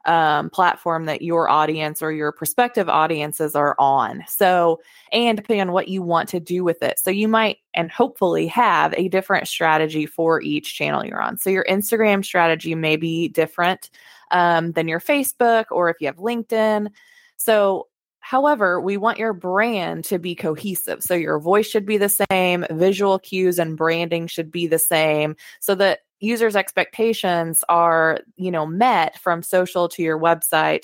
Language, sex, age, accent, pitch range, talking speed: English, female, 20-39, American, 165-200 Hz, 175 wpm